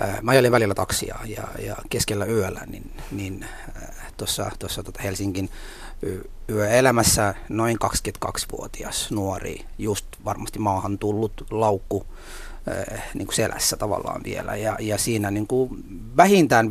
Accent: native